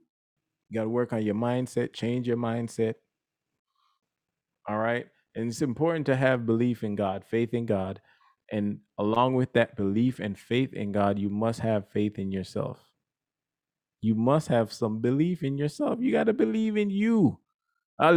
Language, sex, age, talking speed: English, male, 20-39, 170 wpm